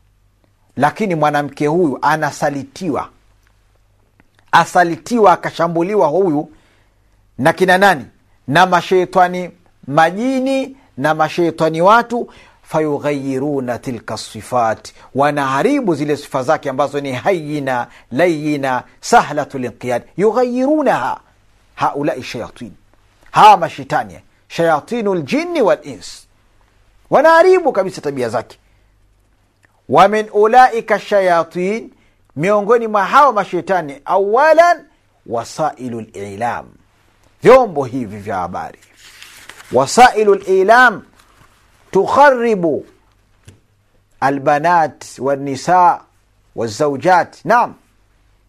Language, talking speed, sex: Swahili, 80 wpm, male